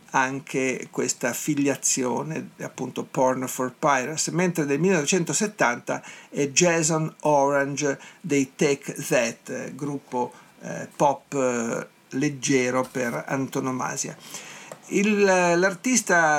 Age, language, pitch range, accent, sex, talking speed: 50-69, Italian, 130-160 Hz, native, male, 90 wpm